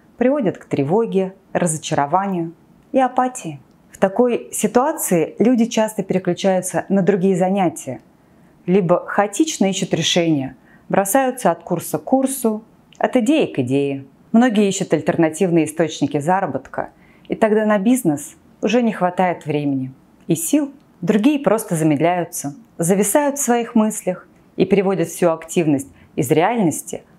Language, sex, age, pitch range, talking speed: Russian, female, 30-49, 160-215 Hz, 125 wpm